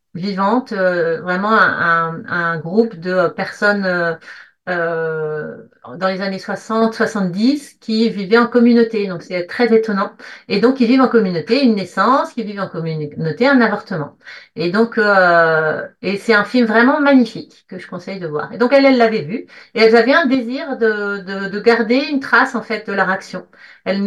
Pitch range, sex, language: 190-240 Hz, female, French